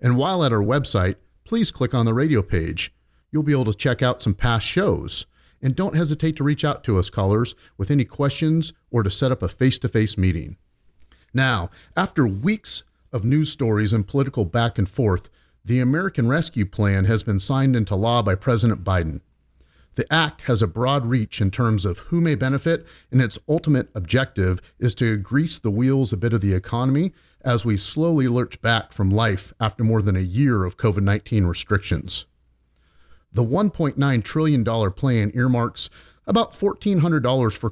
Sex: male